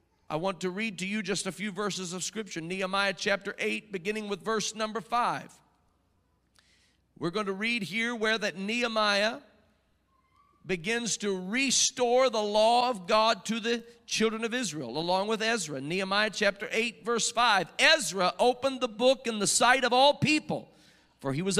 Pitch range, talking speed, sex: 195-240 Hz, 170 wpm, male